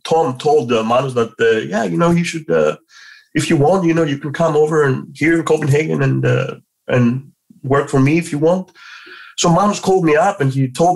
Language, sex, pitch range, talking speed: English, male, 140-180 Hz, 225 wpm